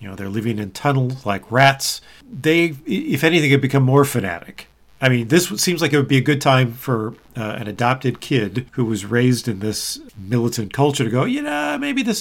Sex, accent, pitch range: male, American, 115-150 Hz